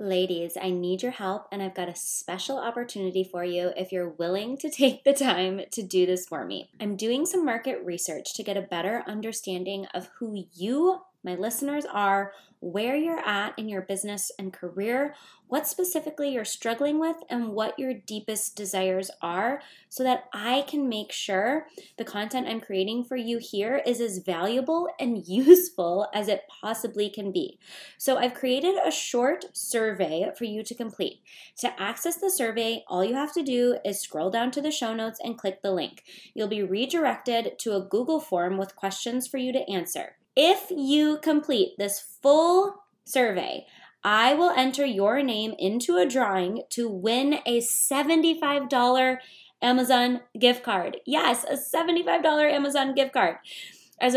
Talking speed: 170 wpm